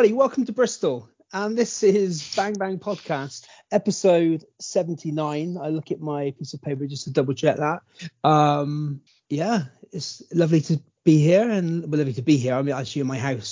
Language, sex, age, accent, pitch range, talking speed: English, male, 30-49, British, 130-165 Hz, 185 wpm